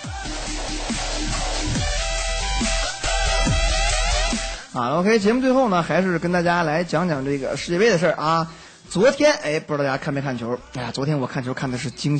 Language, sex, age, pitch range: Chinese, male, 20-39, 135-195 Hz